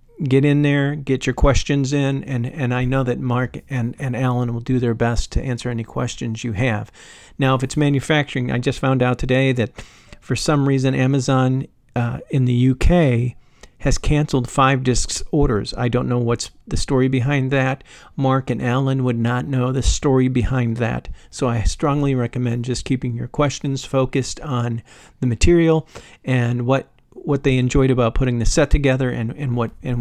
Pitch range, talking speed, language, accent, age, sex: 120-140 Hz, 185 wpm, English, American, 50-69, male